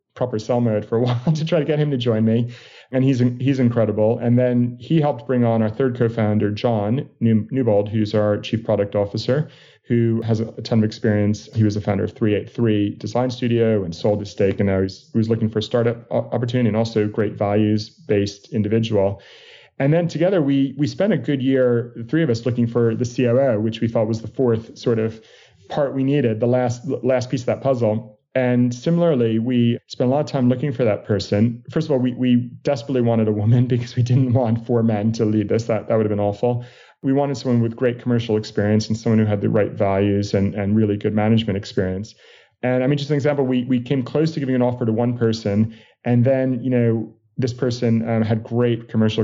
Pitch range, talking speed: 110-125 Hz, 230 wpm